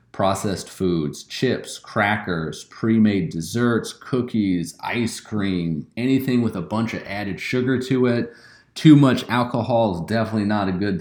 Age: 30-49